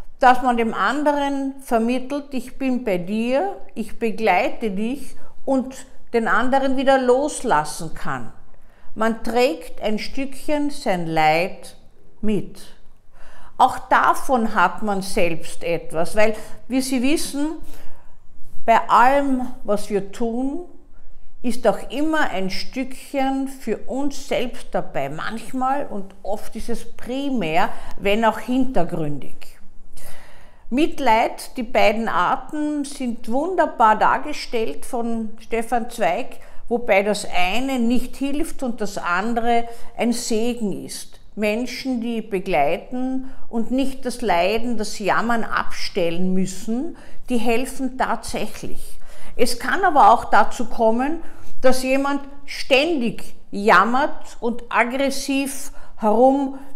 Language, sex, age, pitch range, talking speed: German, female, 50-69, 215-270 Hz, 110 wpm